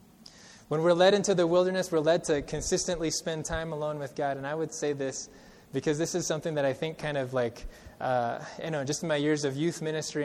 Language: English